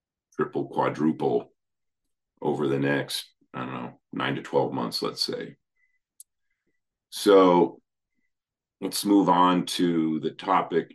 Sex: male